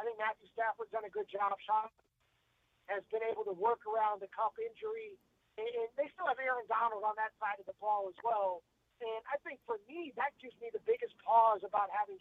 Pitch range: 210-290 Hz